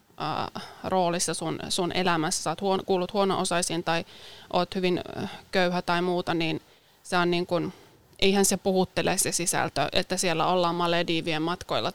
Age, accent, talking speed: 20-39, native, 145 wpm